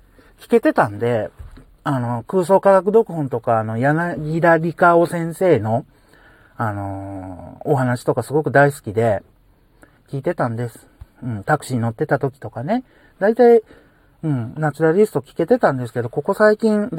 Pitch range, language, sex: 130-175 Hz, Japanese, male